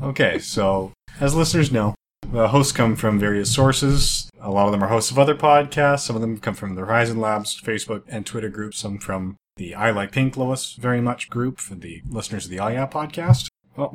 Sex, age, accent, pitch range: male, 30-49, American, 105-140 Hz